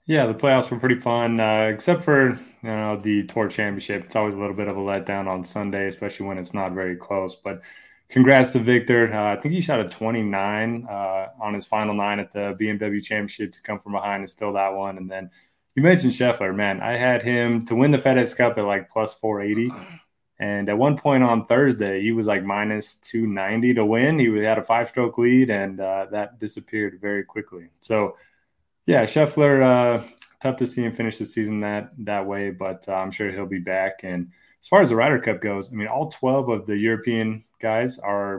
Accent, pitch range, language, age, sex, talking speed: American, 100-120 Hz, English, 20-39, male, 215 wpm